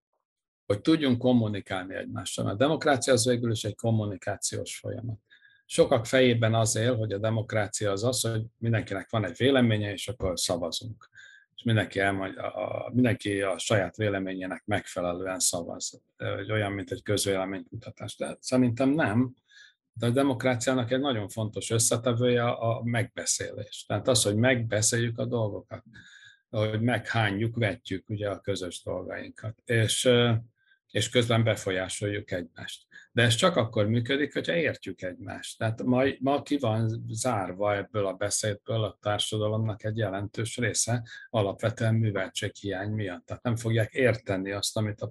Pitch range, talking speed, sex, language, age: 100-125 Hz, 140 wpm, male, Hungarian, 50-69